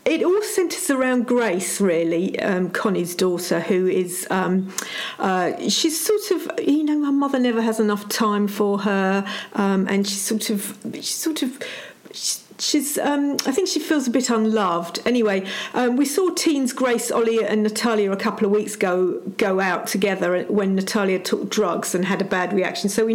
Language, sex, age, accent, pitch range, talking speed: English, female, 50-69, British, 195-240 Hz, 185 wpm